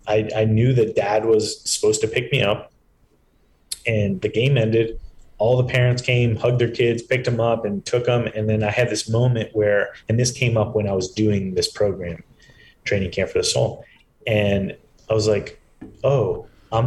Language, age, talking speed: English, 30-49, 200 wpm